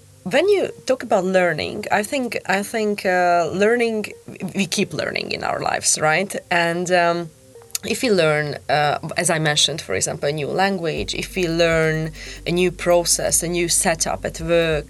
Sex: female